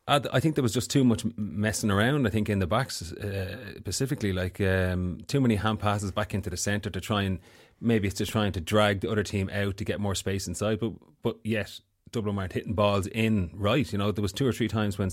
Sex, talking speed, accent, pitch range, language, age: male, 245 wpm, Irish, 95-110 Hz, English, 30-49